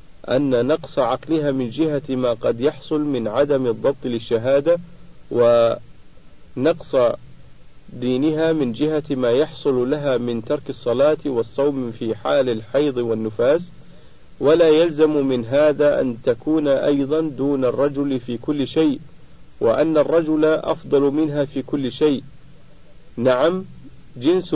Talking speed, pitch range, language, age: 115 wpm, 125-160 Hz, Arabic, 50-69